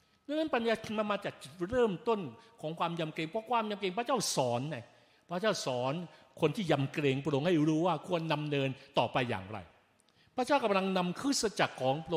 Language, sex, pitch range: Thai, male, 165-260 Hz